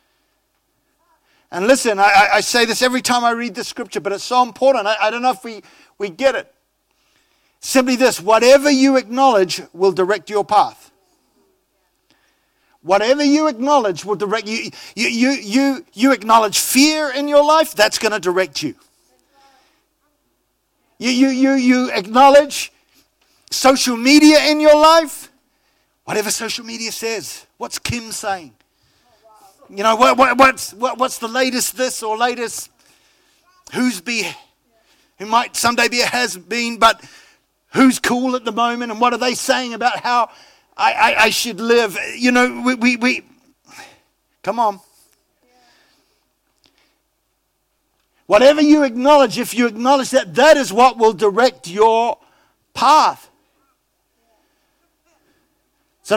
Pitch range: 225-285 Hz